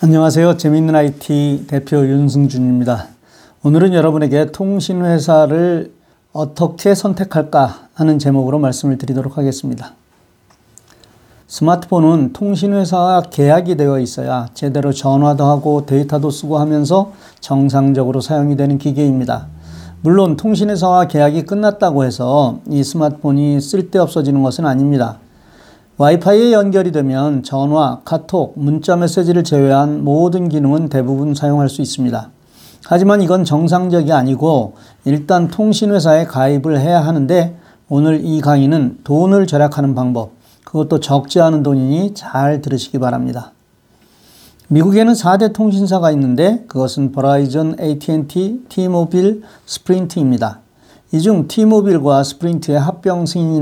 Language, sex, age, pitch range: Korean, male, 40-59, 140-175 Hz